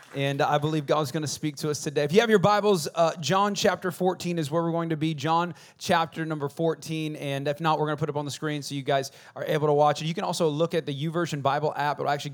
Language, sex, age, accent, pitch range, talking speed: English, male, 30-49, American, 150-185 Hz, 290 wpm